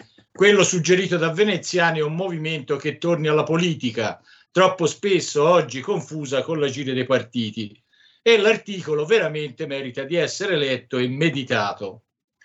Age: 50-69